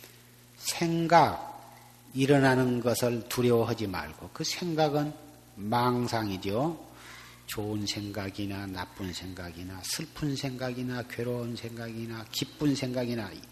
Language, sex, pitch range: Korean, male, 120-185 Hz